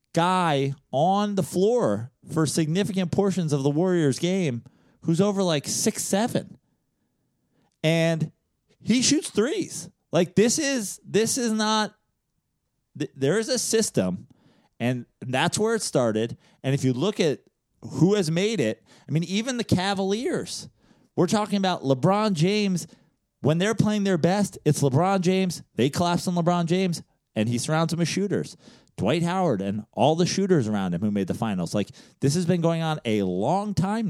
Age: 30-49